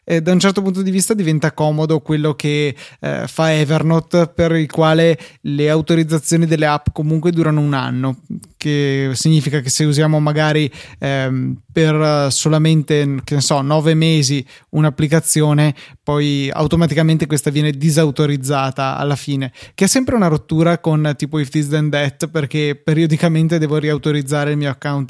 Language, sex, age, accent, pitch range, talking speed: Italian, male, 20-39, native, 145-160 Hz, 155 wpm